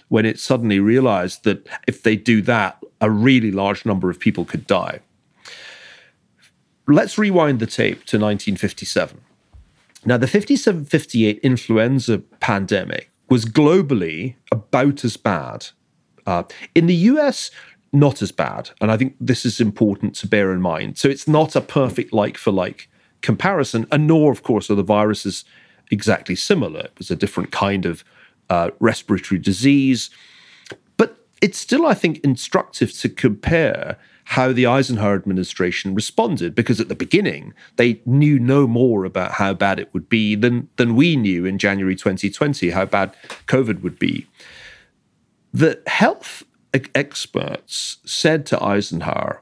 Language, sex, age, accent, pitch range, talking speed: English, male, 40-59, British, 100-140 Hz, 145 wpm